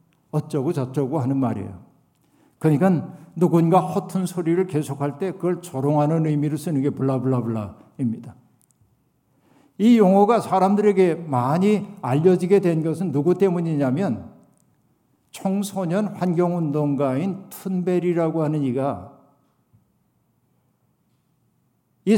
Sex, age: male, 60-79